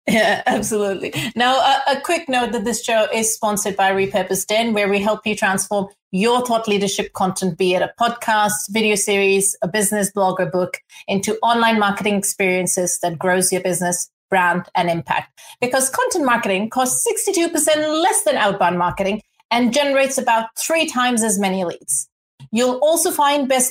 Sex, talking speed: female, 170 wpm